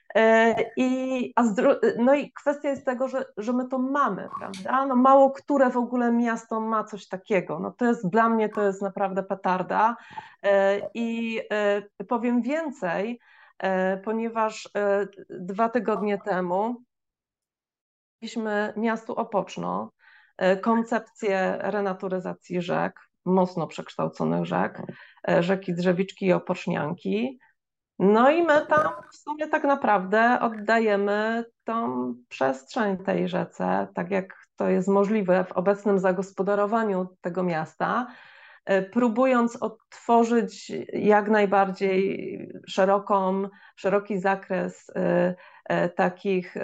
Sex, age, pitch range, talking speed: female, 30-49, 190-230 Hz, 105 wpm